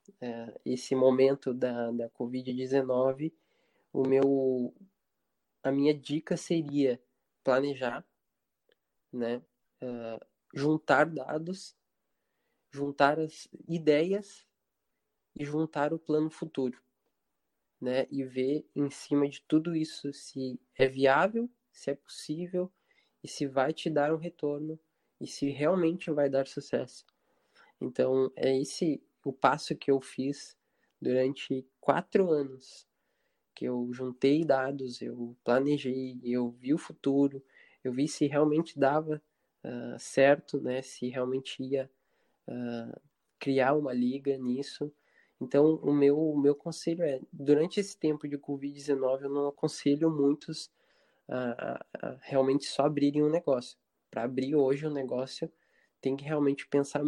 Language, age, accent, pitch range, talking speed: Portuguese, 20-39, Brazilian, 130-155 Hz, 120 wpm